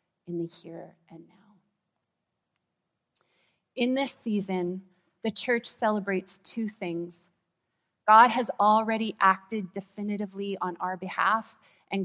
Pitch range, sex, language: 180-210 Hz, female, English